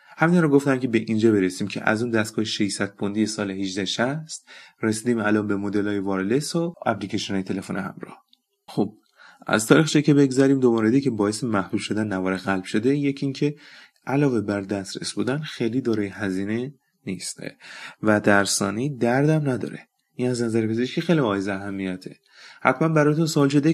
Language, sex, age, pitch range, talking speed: Persian, male, 30-49, 105-135 Hz, 160 wpm